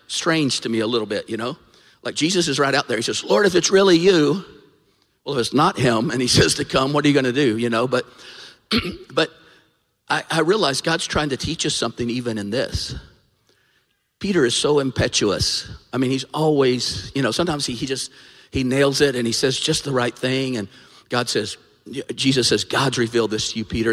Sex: male